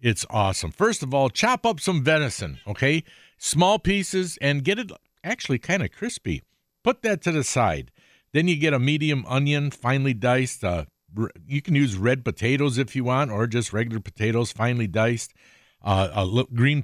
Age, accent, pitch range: 50-69, American, 105-150 Hz